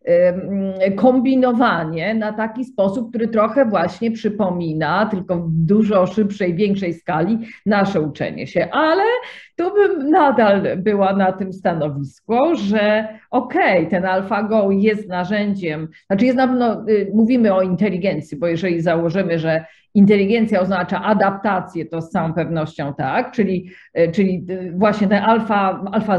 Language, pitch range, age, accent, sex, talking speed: Polish, 185-235 Hz, 50-69, native, female, 120 wpm